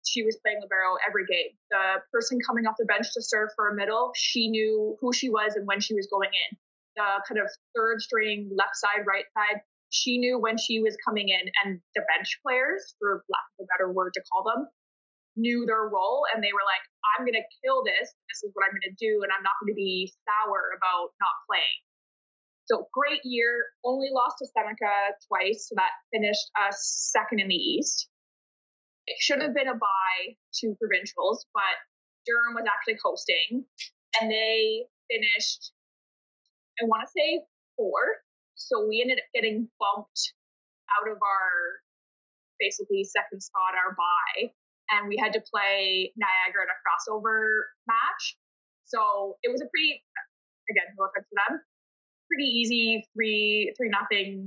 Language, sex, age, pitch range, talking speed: English, female, 20-39, 200-250 Hz, 175 wpm